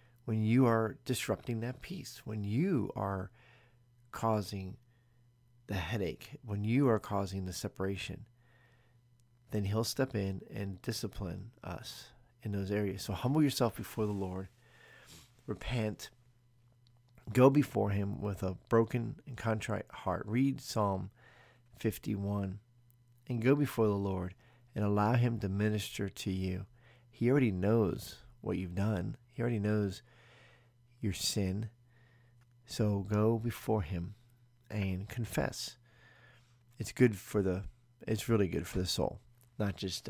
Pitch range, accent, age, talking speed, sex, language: 100-120 Hz, American, 40-59, 130 wpm, male, English